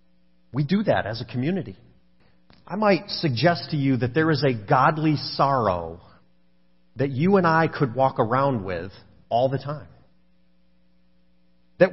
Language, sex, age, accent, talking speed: English, male, 40-59, American, 145 wpm